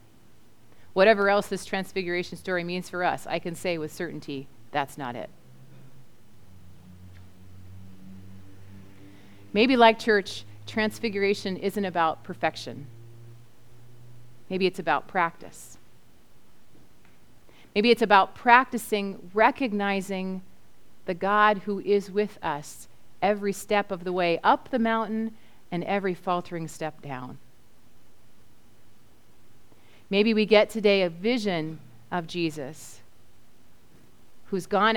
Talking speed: 105 wpm